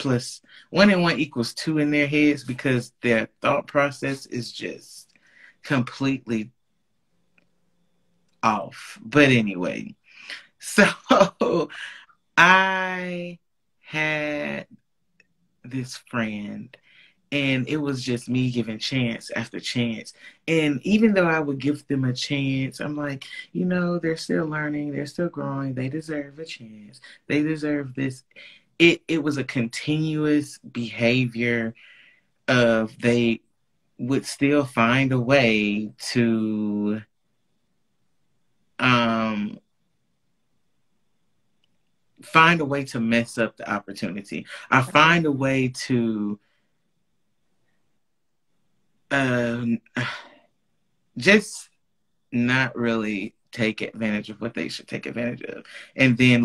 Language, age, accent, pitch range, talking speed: English, 30-49, American, 120-150 Hz, 110 wpm